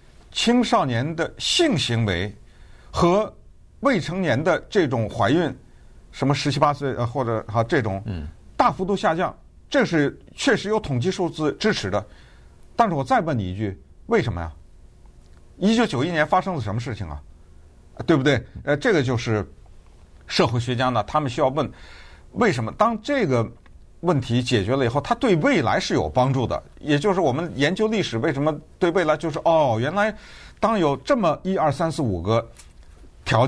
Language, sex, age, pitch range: Chinese, male, 50-69, 105-175 Hz